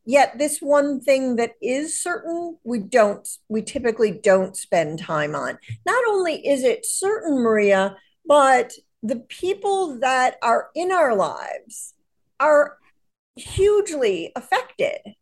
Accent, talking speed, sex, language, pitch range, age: American, 125 wpm, female, English, 210-300 Hz, 40-59